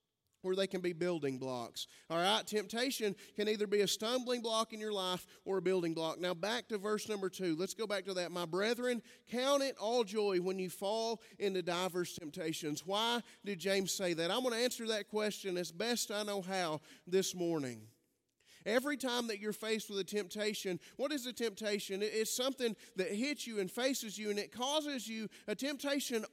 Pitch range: 190-230 Hz